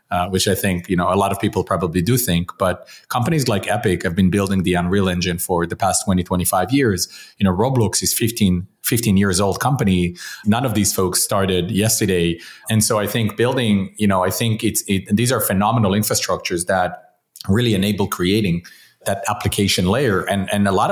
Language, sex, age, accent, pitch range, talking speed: English, male, 30-49, Canadian, 95-115 Hz, 200 wpm